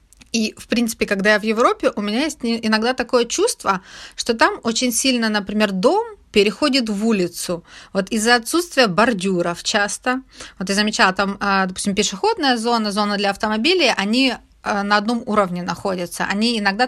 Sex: female